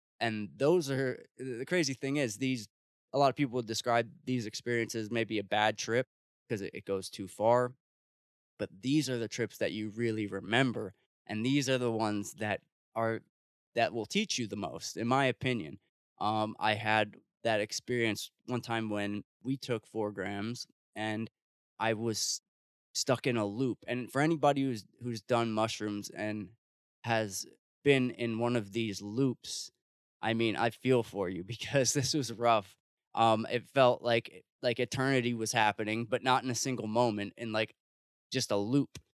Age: 20-39